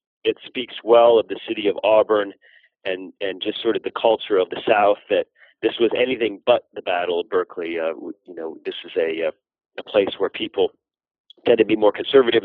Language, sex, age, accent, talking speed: English, male, 40-59, American, 200 wpm